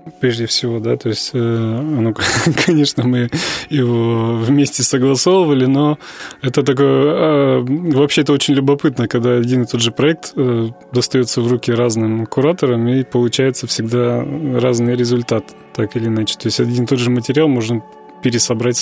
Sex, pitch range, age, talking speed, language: male, 115-135 Hz, 20-39, 145 wpm, Russian